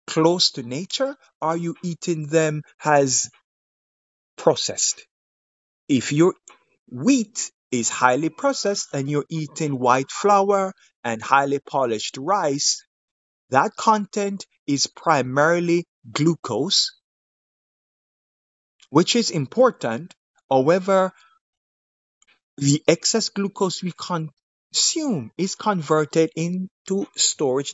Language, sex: English, male